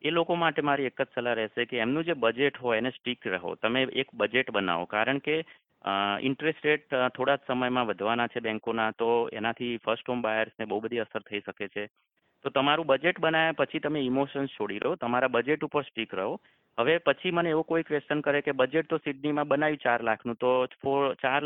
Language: Gujarati